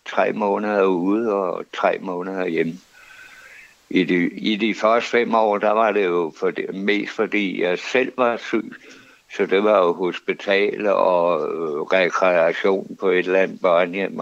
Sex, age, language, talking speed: male, 60-79, Danish, 160 wpm